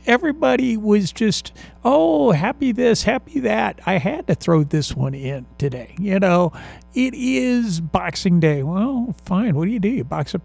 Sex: male